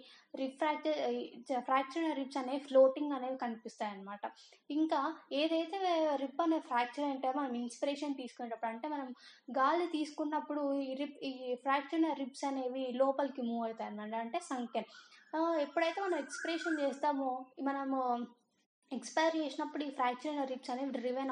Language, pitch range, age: Telugu, 250-300 Hz, 20-39